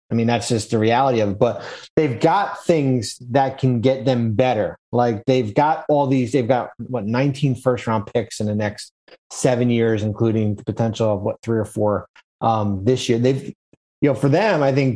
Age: 30-49